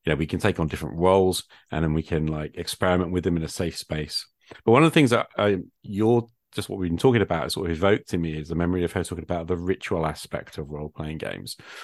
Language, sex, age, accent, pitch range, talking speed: English, male, 40-59, British, 80-95 Hz, 265 wpm